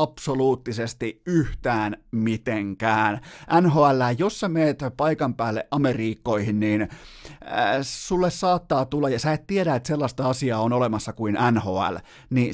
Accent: native